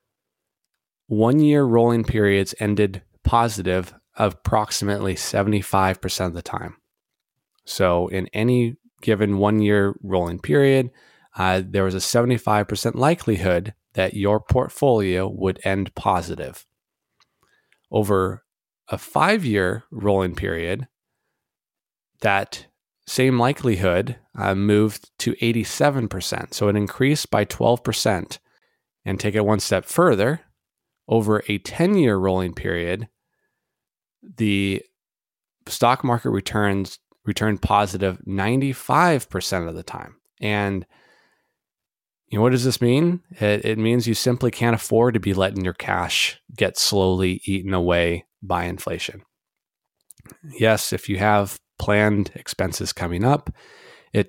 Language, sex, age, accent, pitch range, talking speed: English, male, 20-39, American, 95-115 Hz, 115 wpm